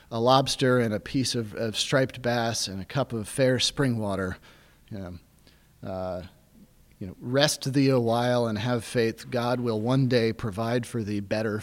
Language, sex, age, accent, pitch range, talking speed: English, male, 30-49, American, 115-150 Hz, 185 wpm